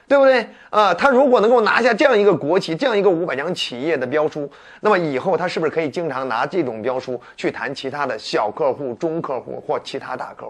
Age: 30-49